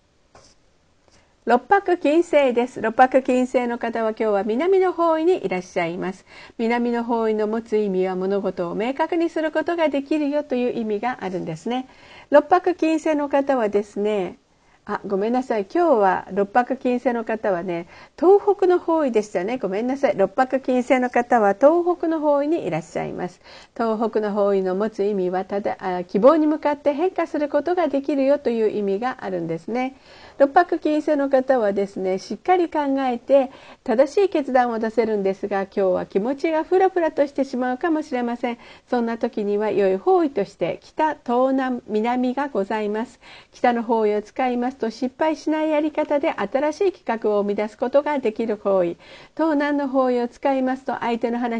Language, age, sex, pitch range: Japanese, 50-69, female, 210-295 Hz